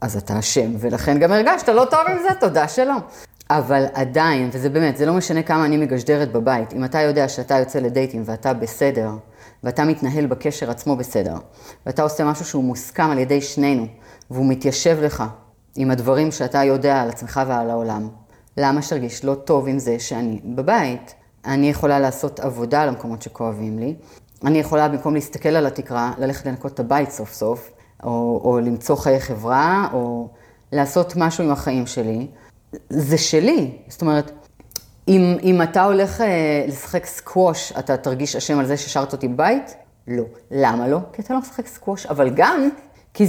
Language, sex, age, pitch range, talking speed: Hebrew, female, 30-49, 120-155 Hz, 170 wpm